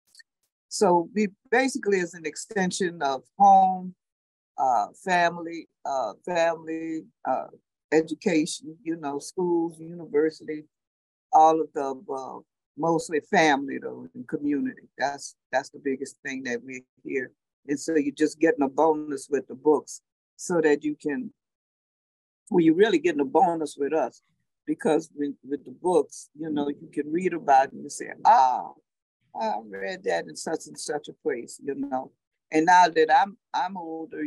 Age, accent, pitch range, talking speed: 60-79, American, 145-190 Hz, 155 wpm